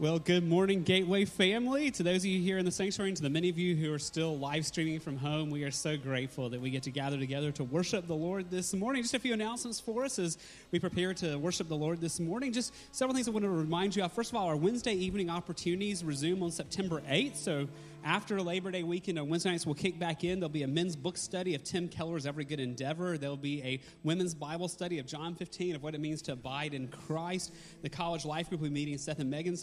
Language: English